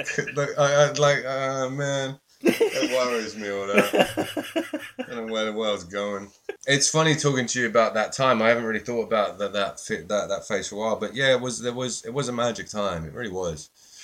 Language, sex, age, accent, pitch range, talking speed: English, male, 20-39, British, 100-135 Hz, 215 wpm